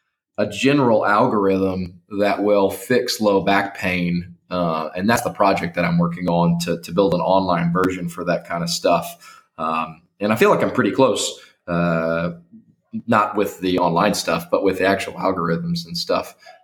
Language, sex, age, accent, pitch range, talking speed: English, male, 20-39, American, 90-115 Hz, 180 wpm